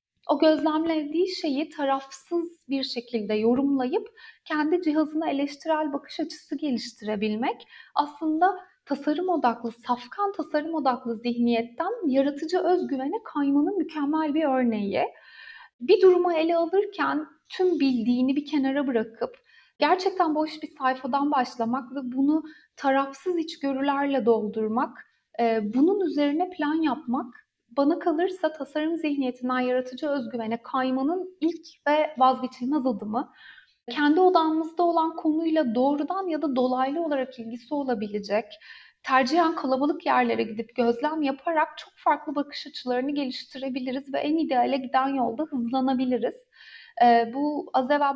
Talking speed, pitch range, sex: 115 wpm, 250-315 Hz, female